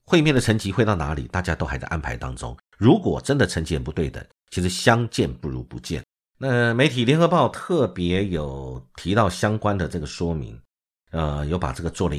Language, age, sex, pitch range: Chinese, 50-69, male, 80-125 Hz